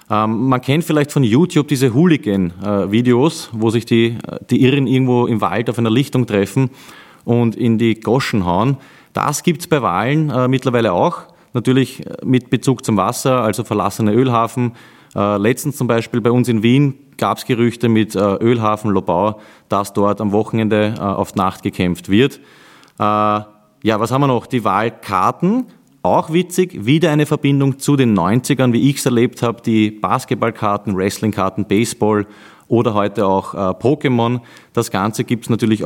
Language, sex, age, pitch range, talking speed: German, male, 30-49, 100-130 Hz, 155 wpm